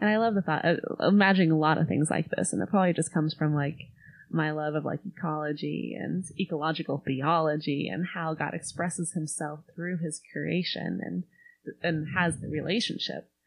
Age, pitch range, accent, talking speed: 20-39, 155-190 Hz, American, 185 wpm